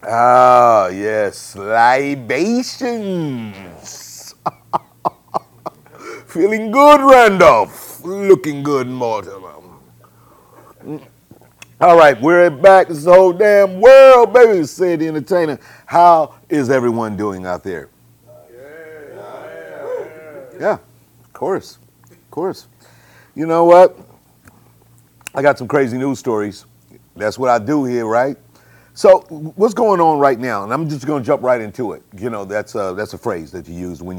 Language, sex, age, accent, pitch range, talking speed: English, male, 50-69, American, 105-160 Hz, 130 wpm